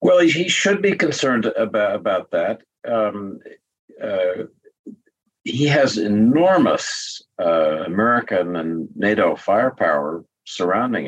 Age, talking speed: 50-69, 105 wpm